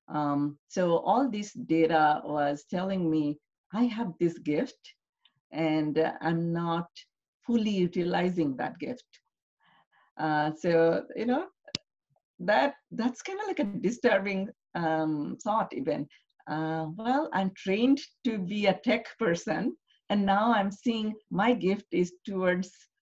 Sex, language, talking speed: female, English, 135 wpm